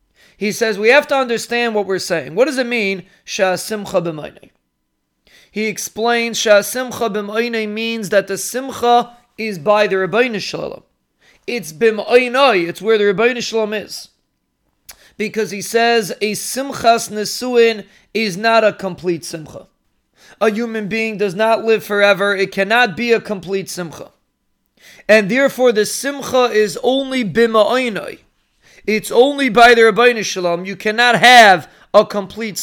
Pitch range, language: 200-240 Hz, English